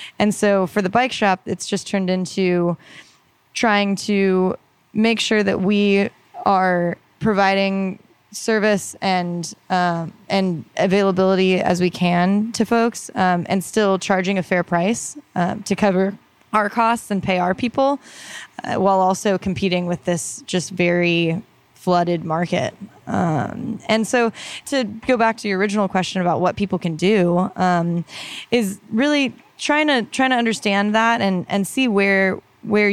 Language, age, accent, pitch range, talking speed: English, 20-39, American, 180-215 Hz, 150 wpm